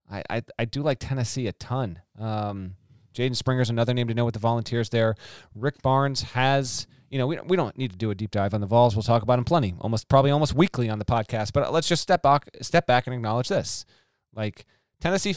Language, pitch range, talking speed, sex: English, 120-155 Hz, 235 wpm, male